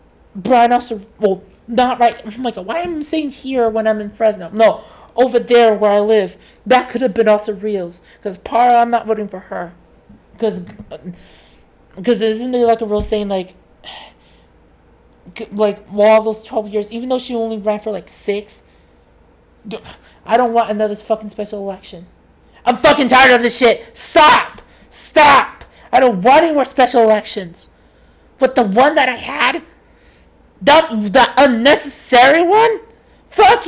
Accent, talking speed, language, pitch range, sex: American, 165 wpm, English, 210-275 Hz, male